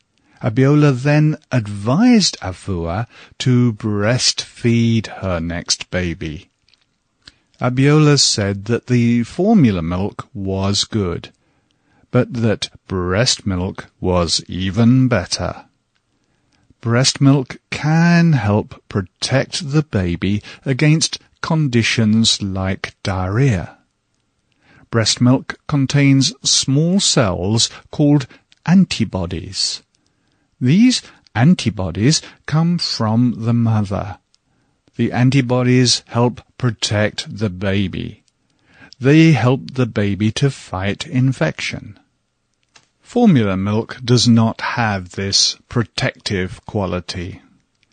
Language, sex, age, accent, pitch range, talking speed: English, male, 50-69, British, 100-140 Hz, 85 wpm